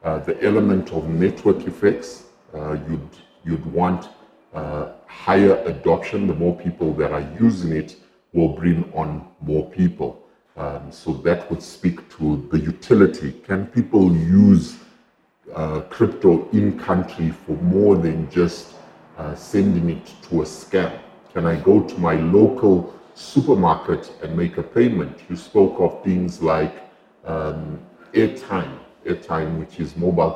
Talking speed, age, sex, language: 140 wpm, 50-69, female, English